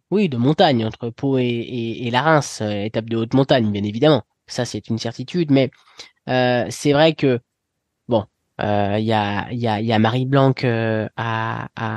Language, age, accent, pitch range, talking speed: French, 20-39, French, 120-160 Hz, 185 wpm